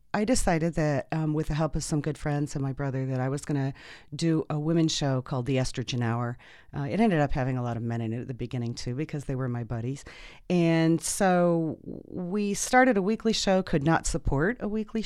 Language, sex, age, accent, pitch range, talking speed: English, female, 40-59, American, 135-170 Hz, 235 wpm